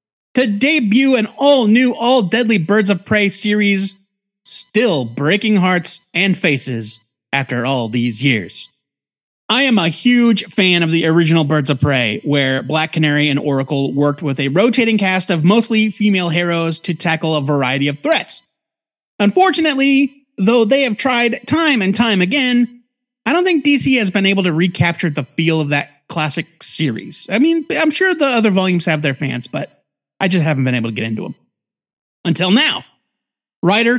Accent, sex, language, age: American, male, English, 30-49